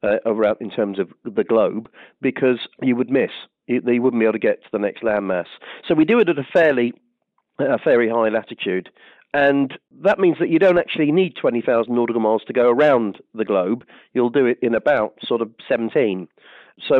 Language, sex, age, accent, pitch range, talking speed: English, male, 40-59, British, 105-130 Hz, 200 wpm